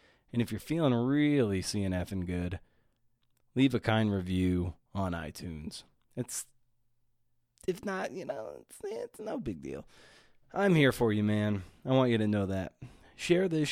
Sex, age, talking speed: male, 30-49, 170 wpm